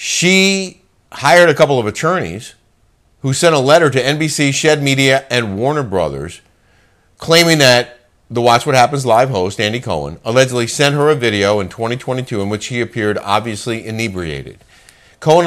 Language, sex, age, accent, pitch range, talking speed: English, male, 50-69, American, 105-145 Hz, 160 wpm